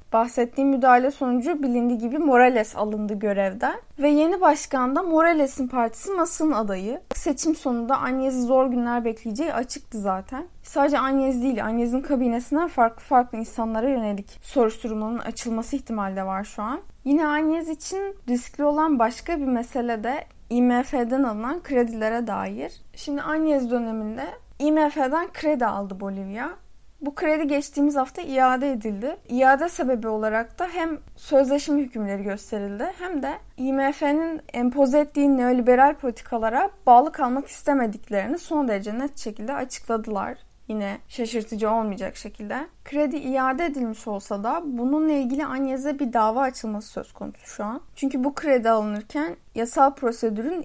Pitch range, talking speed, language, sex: 225-290 Hz, 135 wpm, Turkish, female